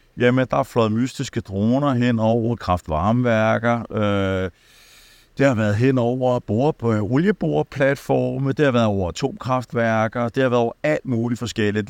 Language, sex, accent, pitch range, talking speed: Danish, male, native, 100-125 Hz, 140 wpm